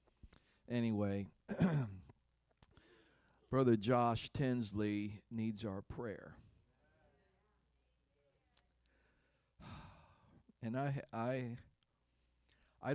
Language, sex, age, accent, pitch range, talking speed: English, male, 50-69, American, 95-120 Hz, 50 wpm